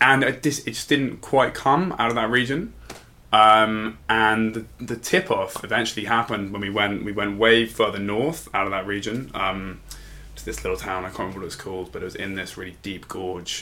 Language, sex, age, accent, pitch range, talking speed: English, male, 20-39, British, 90-105 Hz, 225 wpm